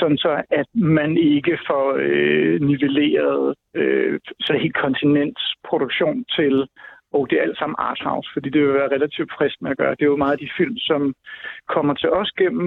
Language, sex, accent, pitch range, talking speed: Danish, male, native, 150-210 Hz, 190 wpm